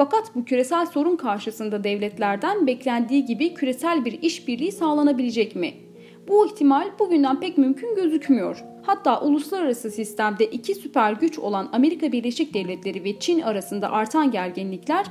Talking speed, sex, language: 135 wpm, female, Turkish